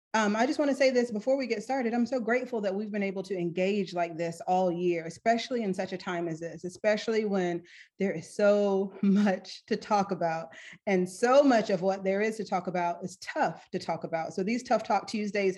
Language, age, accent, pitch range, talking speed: English, 40-59, American, 185-230 Hz, 230 wpm